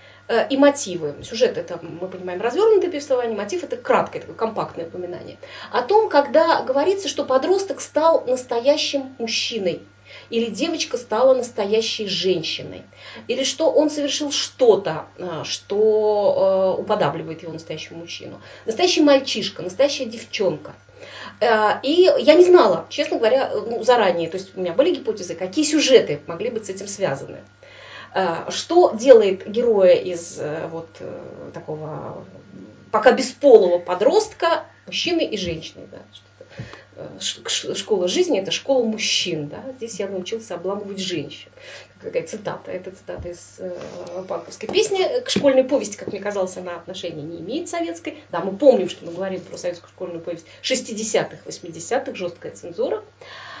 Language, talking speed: Russian, 135 wpm